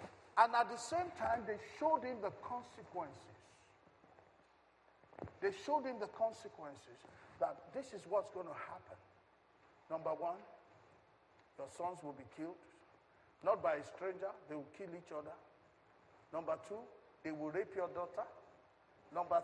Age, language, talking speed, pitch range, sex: 50-69, English, 140 wpm, 175-260 Hz, male